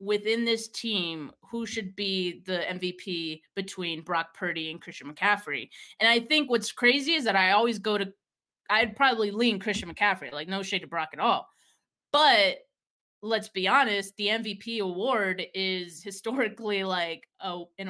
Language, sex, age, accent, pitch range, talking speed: English, female, 20-39, American, 180-225 Hz, 160 wpm